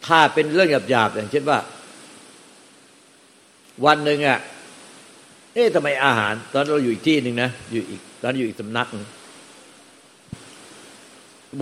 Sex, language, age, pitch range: male, Thai, 60-79, 110-140 Hz